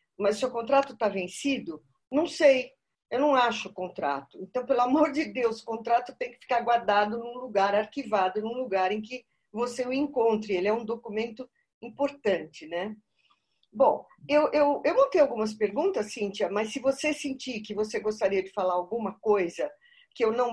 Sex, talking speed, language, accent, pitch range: female, 180 wpm, Portuguese, Brazilian, 200-260 Hz